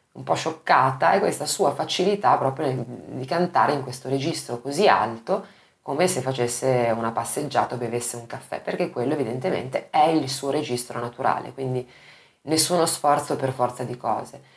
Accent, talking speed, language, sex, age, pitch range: native, 160 wpm, Italian, female, 20-39, 125-145 Hz